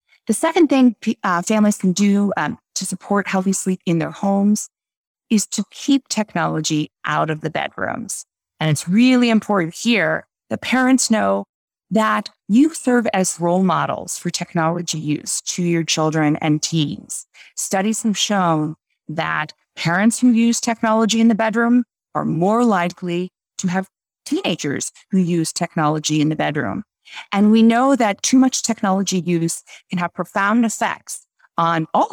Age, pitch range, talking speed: 30-49, 170-230 Hz, 155 wpm